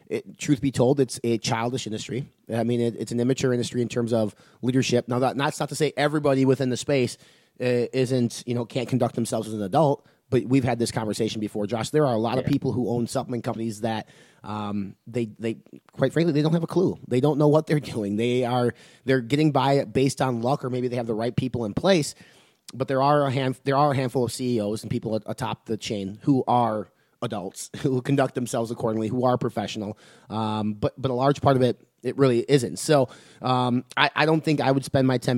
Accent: American